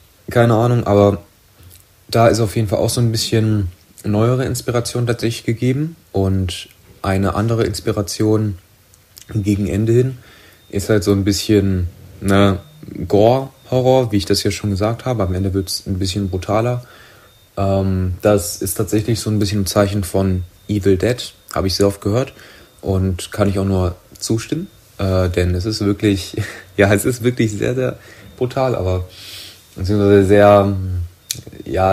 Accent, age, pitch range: German, 30-49, 95-115 Hz